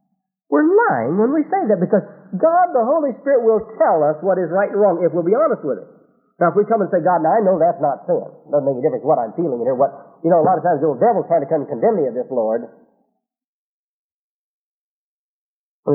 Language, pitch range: English, 145-225 Hz